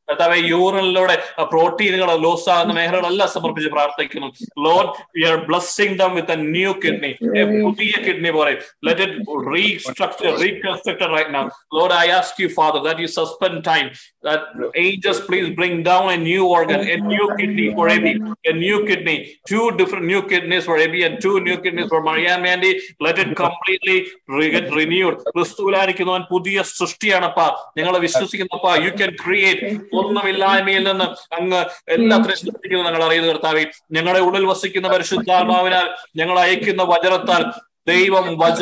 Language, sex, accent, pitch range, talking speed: Malayalam, male, native, 165-190 Hz, 125 wpm